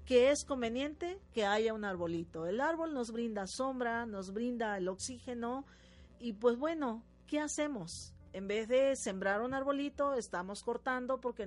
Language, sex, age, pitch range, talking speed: Spanish, female, 40-59, 200-260 Hz, 155 wpm